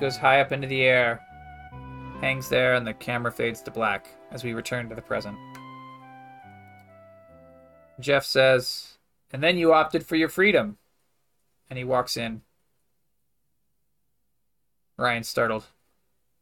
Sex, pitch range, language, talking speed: male, 115-165 Hz, English, 130 wpm